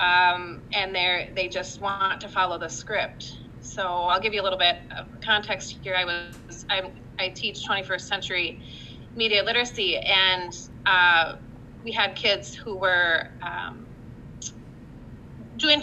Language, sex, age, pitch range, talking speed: English, female, 30-49, 175-220 Hz, 140 wpm